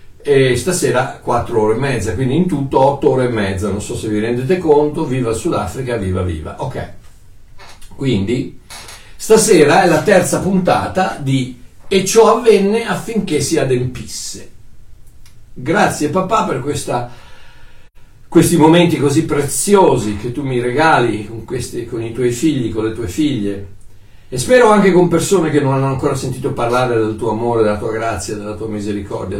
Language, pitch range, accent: Italian, 105-155 Hz, native